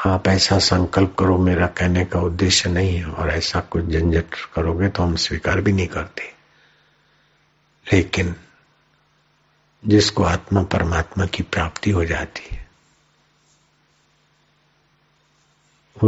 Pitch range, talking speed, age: 85-95 Hz, 110 wpm, 60-79